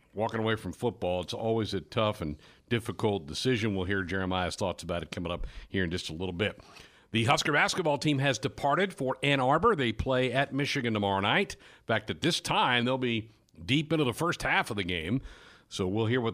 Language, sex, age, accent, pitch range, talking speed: English, male, 60-79, American, 100-130 Hz, 215 wpm